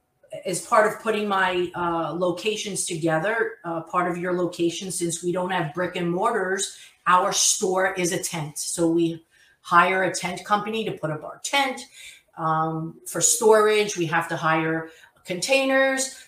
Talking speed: 160 wpm